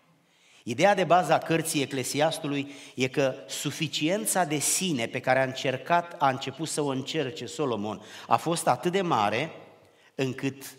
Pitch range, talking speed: 120-155 Hz, 145 wpm